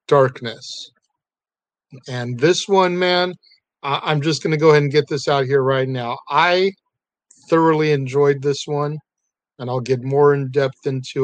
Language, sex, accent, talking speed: English, male, American, 160 wpm